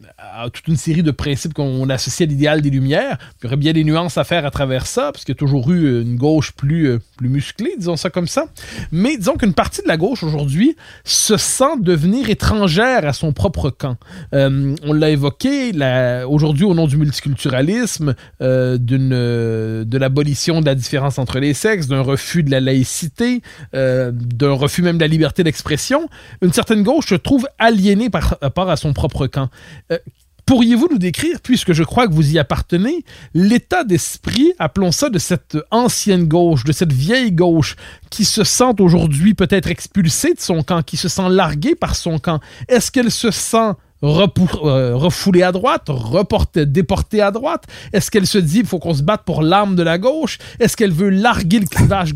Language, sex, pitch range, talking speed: French, male, 140-200 Hz, 200 wpm